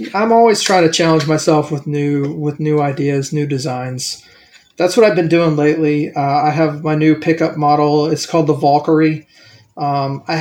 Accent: American